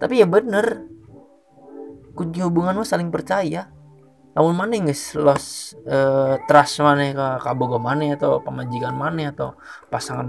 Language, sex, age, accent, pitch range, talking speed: Indonesian, male, 20-39, native, 135-170 Hz, 120 wpm